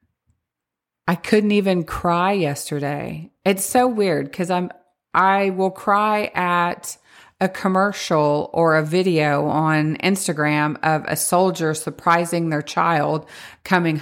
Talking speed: 120 wpm